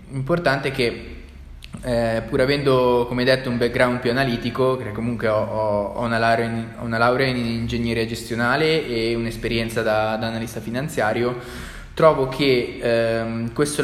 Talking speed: 145 wpm